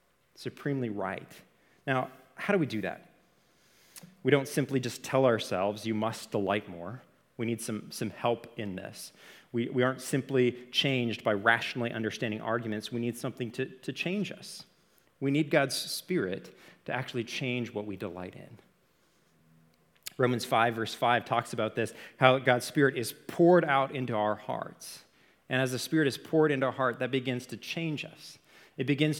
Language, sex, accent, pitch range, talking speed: English, male, American, 120-150 Hz, 175 wpm